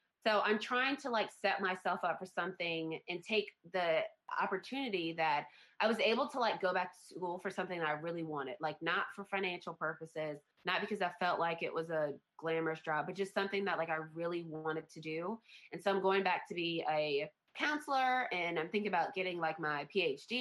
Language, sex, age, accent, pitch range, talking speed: English, female, 20-39, American, 160-200 Hz, 210 wpm